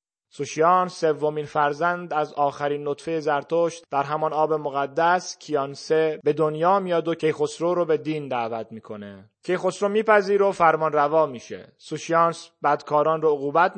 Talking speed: 140 wpm